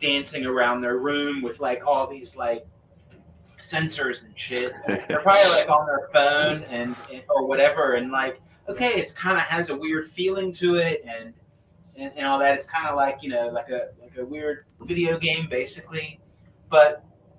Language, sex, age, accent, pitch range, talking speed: English, male, 30-49, American, 130-175 Hz, 190 wpm